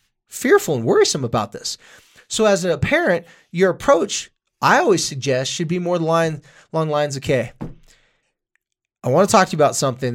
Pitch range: 135-195 Hz